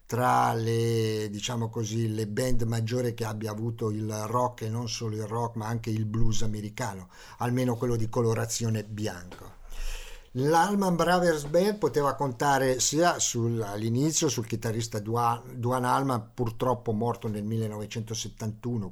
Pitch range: 110-125 Hz